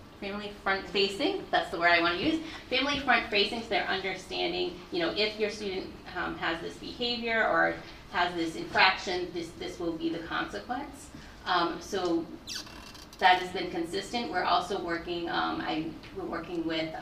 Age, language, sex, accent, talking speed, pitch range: 30-49, English, female, American, 170 wpm, 175-240 Hz